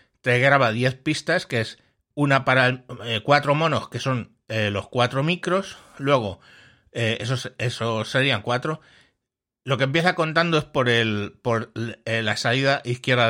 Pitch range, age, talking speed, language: 115-145 Hz, 60-79, 160 wpm, Spanish